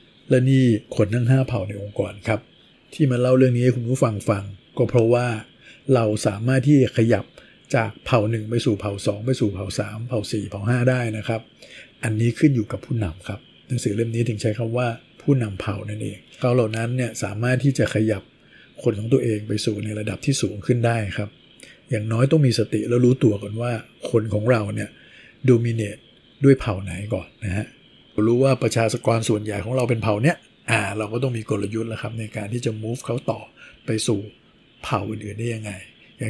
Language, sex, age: Thai, male, 60-79